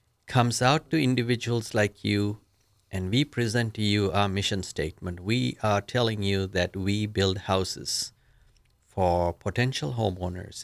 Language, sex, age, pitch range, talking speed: English, male, 50-69, 95-120 Hz, 140 wpm